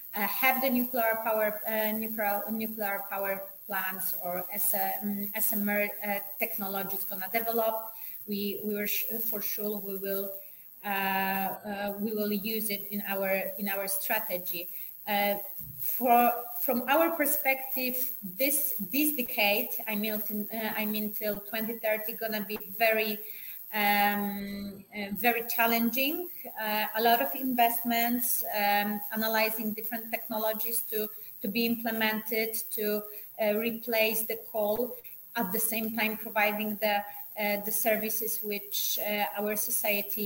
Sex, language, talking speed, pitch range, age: female, English, 140 wpm, 205-225 Hz, 30-49